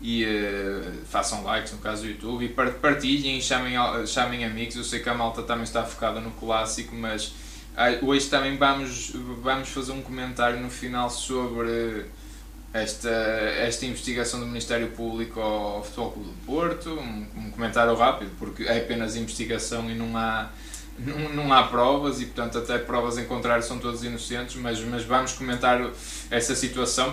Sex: male